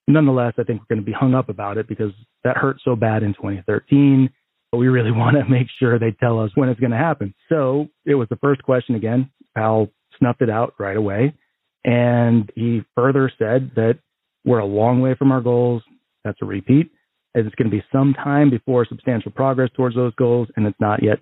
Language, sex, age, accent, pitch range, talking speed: English, male, 30-49, American, 110-130 Hz, 220 wpm